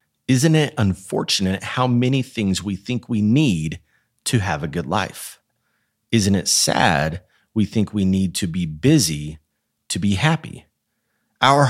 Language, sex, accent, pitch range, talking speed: English, male, American, 90-120 Hz, 150 wpm